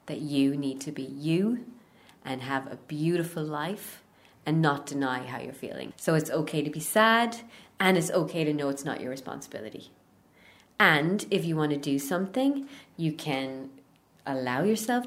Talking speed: 170 wpm